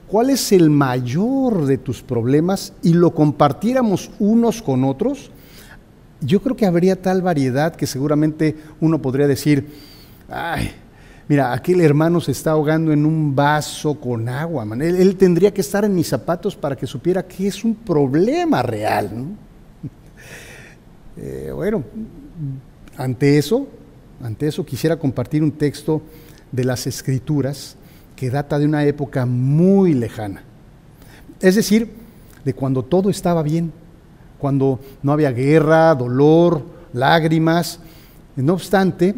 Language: Spanish